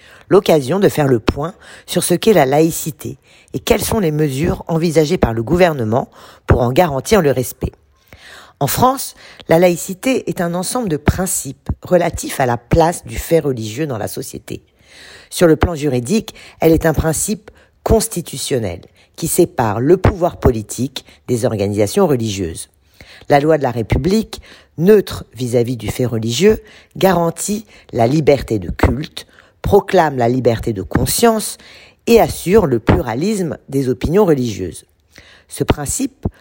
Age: 50-69